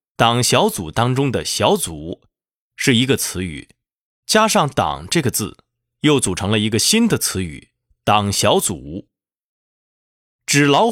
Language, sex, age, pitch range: Chinese, male, 20-39, 115-145 Hz